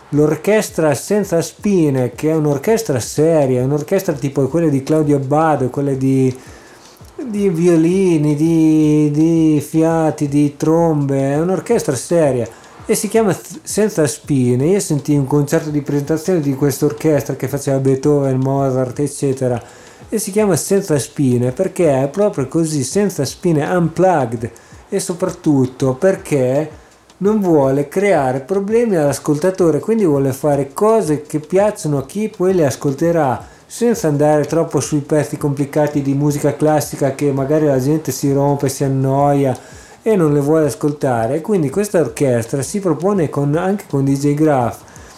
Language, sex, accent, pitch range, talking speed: Italian, male, native, 140-175 Hz, 140 wpm